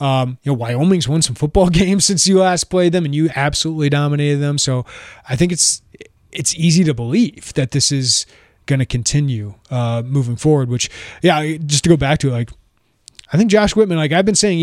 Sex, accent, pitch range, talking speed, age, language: male, American, 120-155 Hz, 210 wpm, 30-49, English